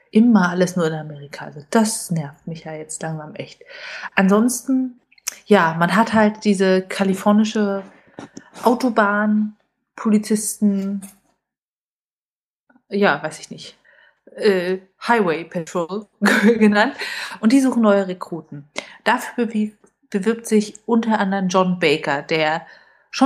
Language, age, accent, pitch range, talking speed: German, 30-49, German, 175-230 Hz, 110 wpm